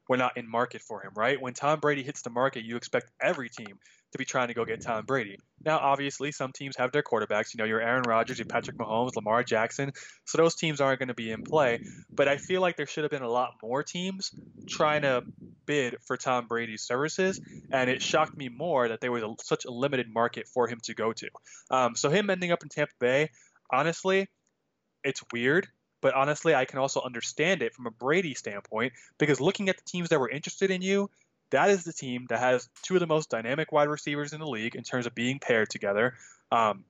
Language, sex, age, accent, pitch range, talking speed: English, male, 20-39, American, 120-150 Hz, 230 wpm